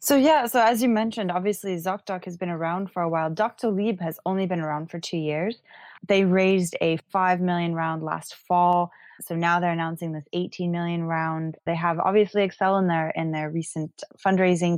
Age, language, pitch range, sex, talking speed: 20-39, English, 160-190 Hz, female, 200 wpm